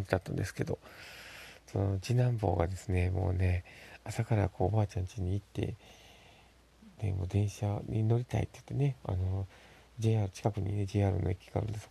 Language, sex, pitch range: Japanese, male, 95-115 Hz